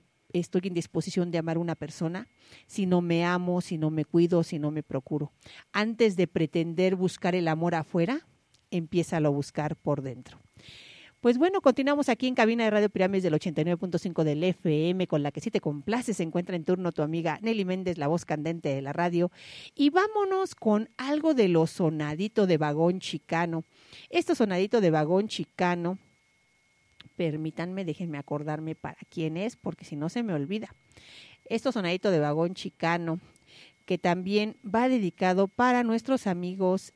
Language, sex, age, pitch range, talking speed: Spanish, female, 40-59, 160-200 Hz, 170 wpm